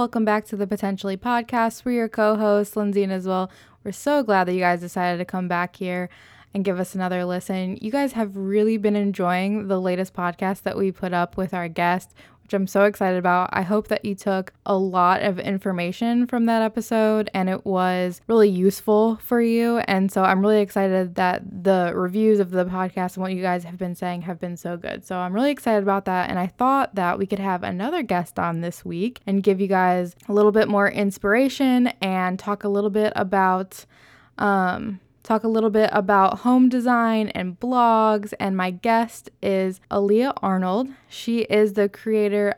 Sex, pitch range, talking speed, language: female, 185-220 Hz, 200 wpm, English